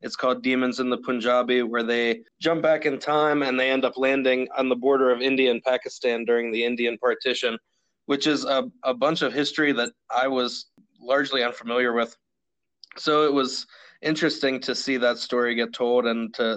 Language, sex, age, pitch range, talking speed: English, male, 20-39, 110-130 Hz, 190 wpm